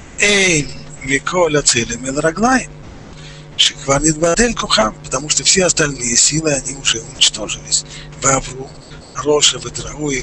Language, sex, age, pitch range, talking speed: Russian, male, 50-69, 135-160 Hz, 80 wpm